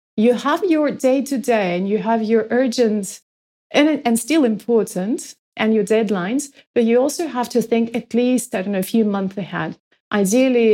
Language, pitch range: English, 205-250 Hz